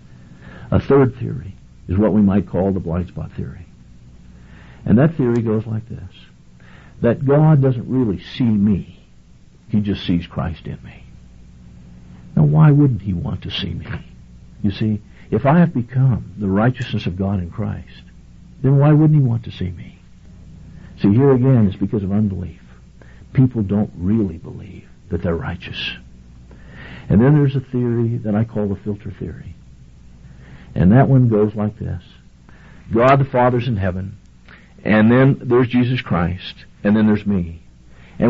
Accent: American